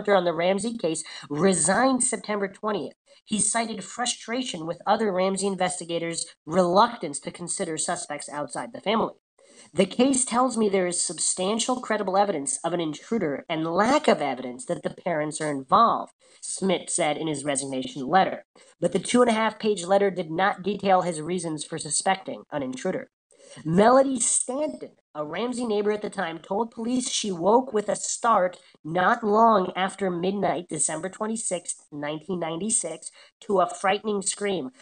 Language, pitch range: English, 175-225 Hz